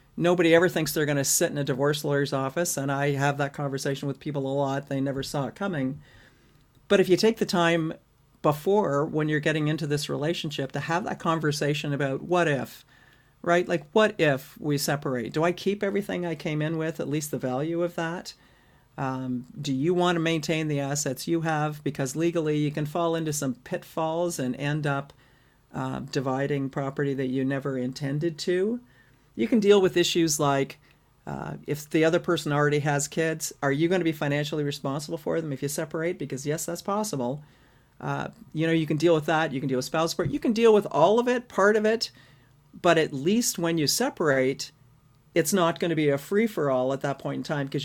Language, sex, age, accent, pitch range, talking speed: English, male, 50-69, American, 140-170 Hz, 205 wpm